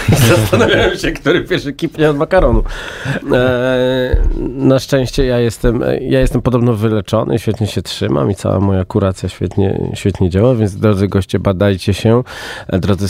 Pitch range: 95-125 Hz